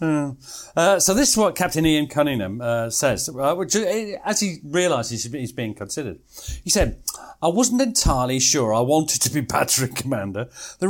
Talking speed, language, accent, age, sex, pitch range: 170 wpm, English, British, 40-59, male, 130-190 Hz